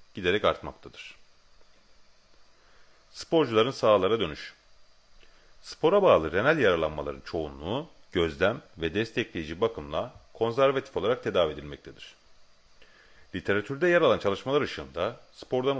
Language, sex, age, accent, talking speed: Turkish, male, 40-59, native, 90 wpm